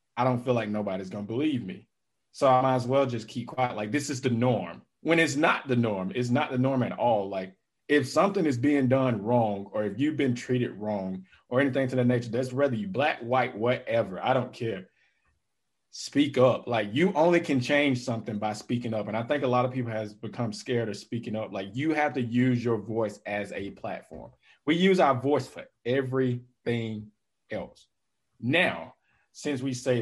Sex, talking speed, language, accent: male, 210 wpm, English, American